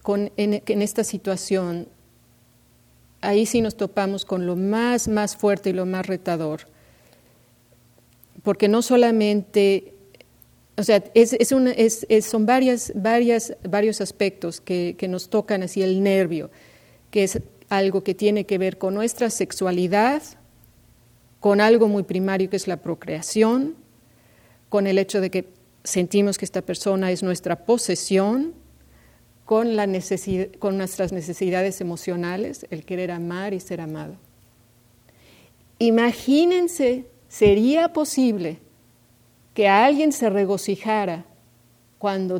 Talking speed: 130 wpm